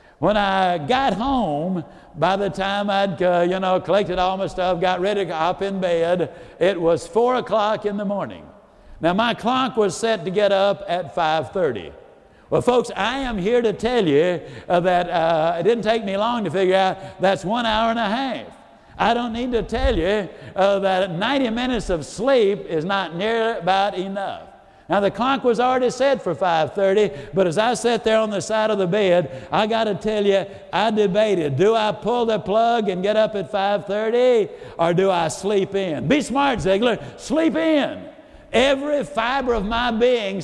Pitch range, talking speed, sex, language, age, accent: 185-230 Hz, 195 wpm, male, English, 60-79, American